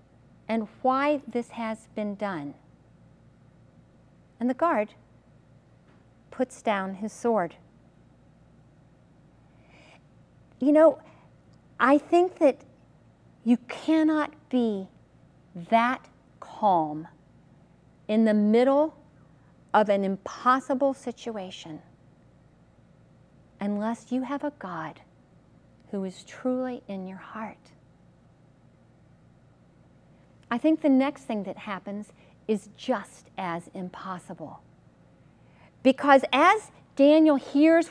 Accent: American